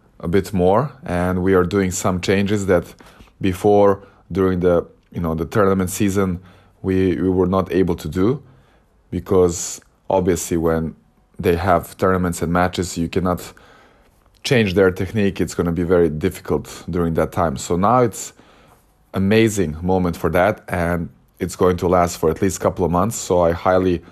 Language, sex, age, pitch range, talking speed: English, male, 20-39, 85-100 Hz, 170 wpm